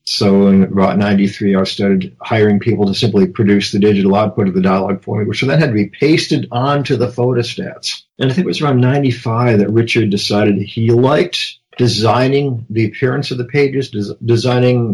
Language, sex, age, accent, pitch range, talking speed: English, male, 50-69, American, 100-125 Hz, 190 wpm